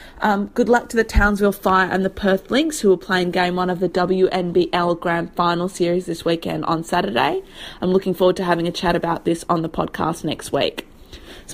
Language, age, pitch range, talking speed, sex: English, 30-49, 170-205 Hz, 215 wpm, female